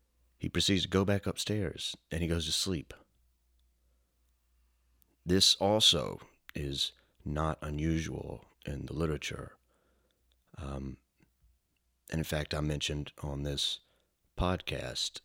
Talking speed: 110 wpm